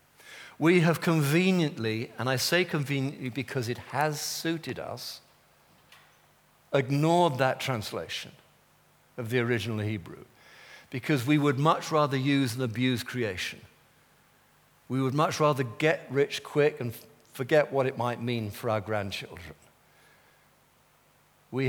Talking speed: 125 wpm